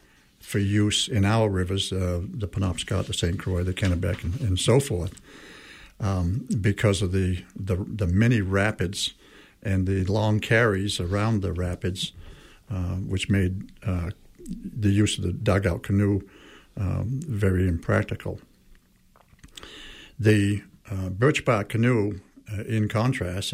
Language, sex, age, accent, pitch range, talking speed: English, male, 60-79, American, 95-110 Hz, 135 wpm